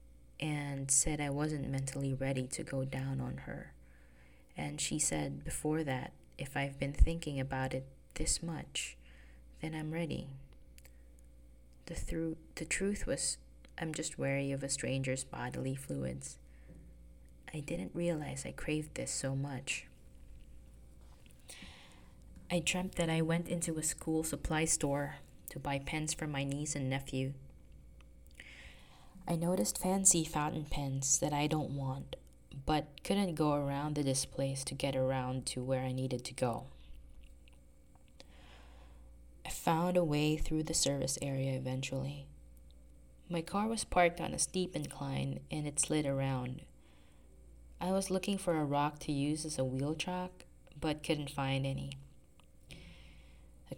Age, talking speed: 20-39, 140 wpm